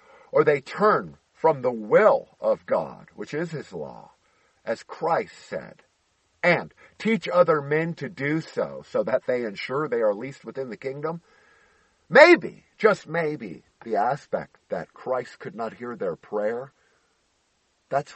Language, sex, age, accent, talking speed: English, male, 50-69, American, 150 wpm